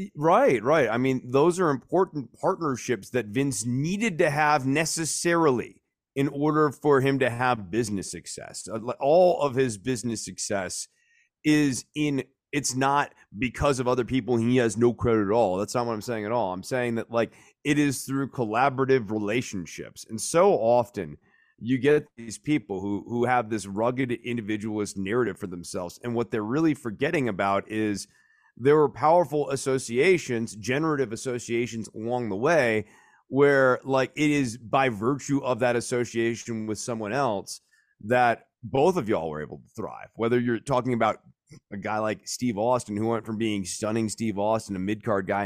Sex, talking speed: male, 170 wpm